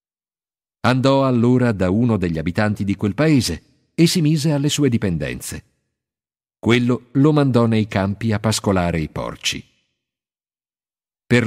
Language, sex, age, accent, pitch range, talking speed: Italian, male, 50-69, native, 95-140 Hz, 130 wpm